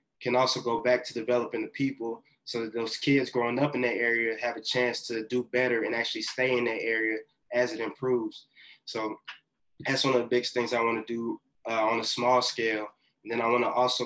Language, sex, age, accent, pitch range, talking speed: English, male, 20-39, American, 110-125 Hz, 220 wpm